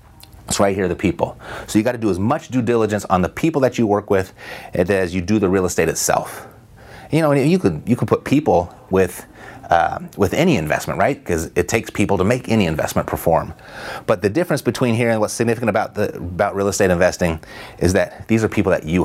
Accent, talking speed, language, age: American, 230 wpm, English, 30-49